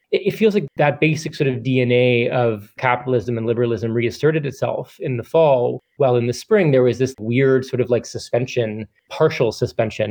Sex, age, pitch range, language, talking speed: male, 20-39, 120-140 Hz, English, 185 wpm